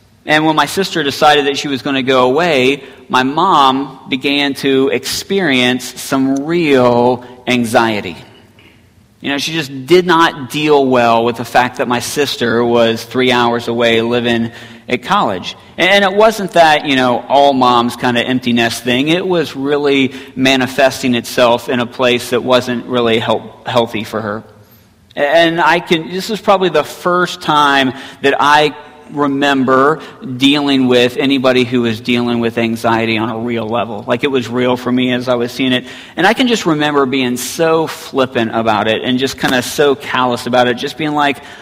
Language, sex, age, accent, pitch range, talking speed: English, male, 40-59, American, 120-150 Hz, 180 wpm